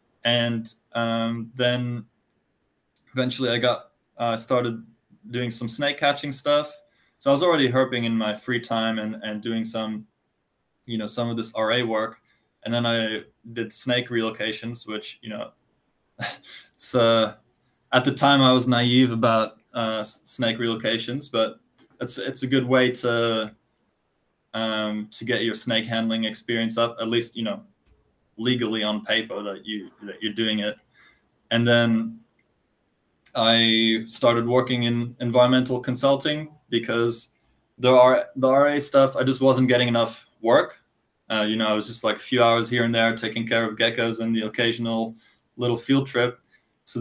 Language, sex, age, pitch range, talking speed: English, male, 20-39, 110-125 Hz, 160 wpm